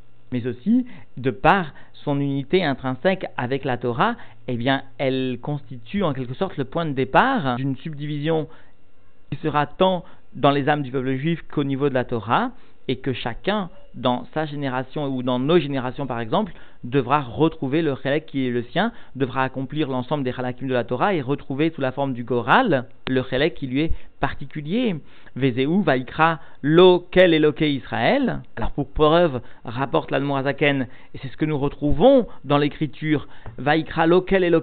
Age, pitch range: 50-69, 130-165 Hz